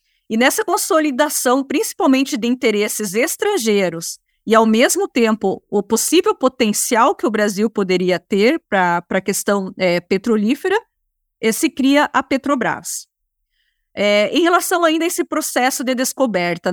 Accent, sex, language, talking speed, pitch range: Brazilian, female, Portuguese, 125 wpm, 210-295 Hz